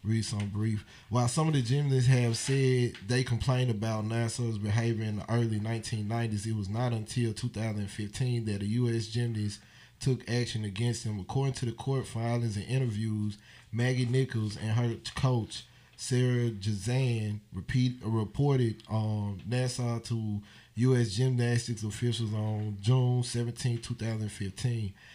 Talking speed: 140 wpm